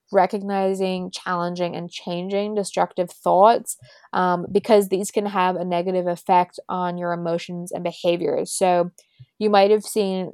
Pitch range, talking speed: 175-205 Hz, 135 wpm